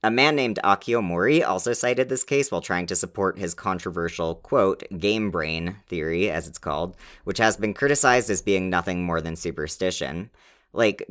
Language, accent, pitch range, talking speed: English, American, 85-105 Hz, 180 wpm